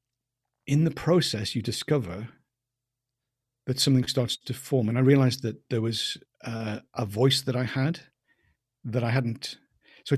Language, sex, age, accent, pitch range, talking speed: English, male, 50-69, British, 115-130 Hz, 155 wpm